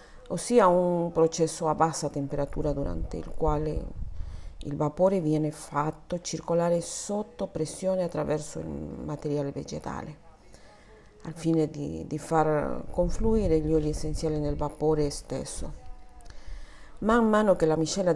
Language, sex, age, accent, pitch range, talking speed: Italian, female, 40-59, native, 145-170 Hz, 120 wpm